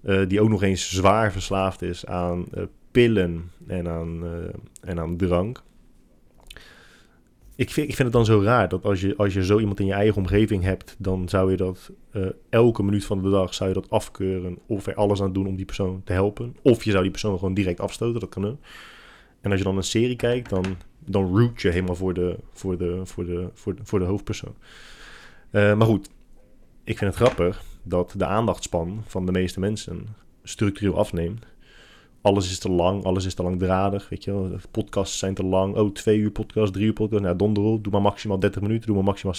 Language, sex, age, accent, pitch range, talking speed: Dutch, male, 20-39, Dutch, 90-105 Hz, 220 wpm